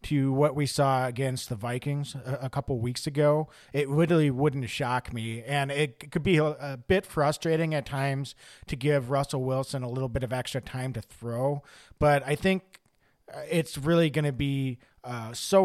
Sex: male